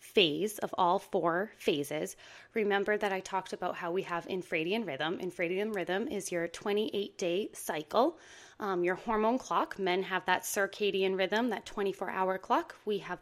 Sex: female